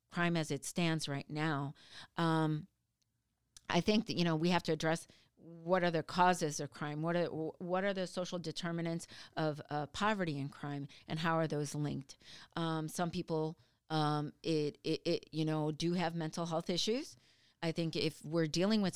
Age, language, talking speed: 40-59, English, 185 wpm